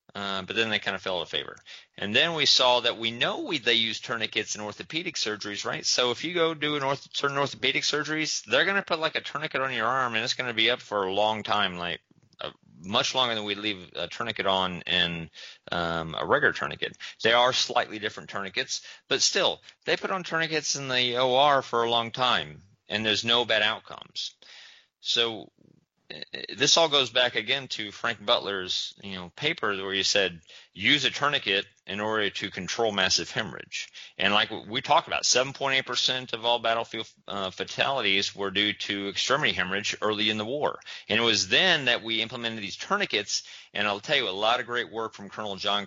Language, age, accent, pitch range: English, 30-49, American, 100-130 Hz